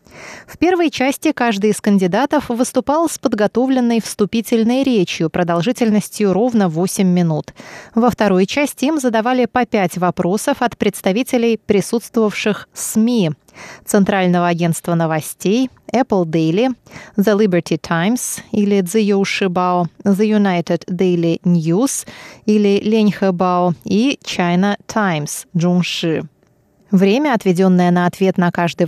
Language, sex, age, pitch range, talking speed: Russian, female, 20-39, 180-240 Hz, 110 wpm